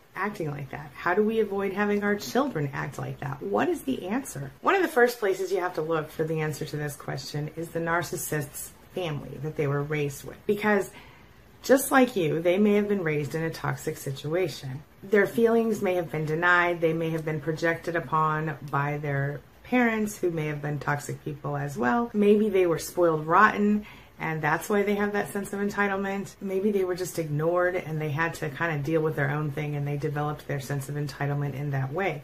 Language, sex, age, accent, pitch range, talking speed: English, female, 30-49, American, 145-190 Hz, 220 wpm